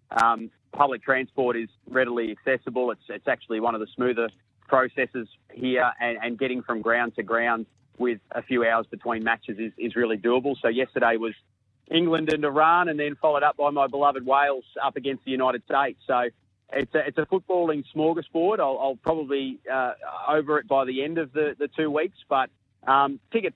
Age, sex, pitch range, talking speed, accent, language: 30-49, male, 115-140 Hz, 190 wpm, Australian, English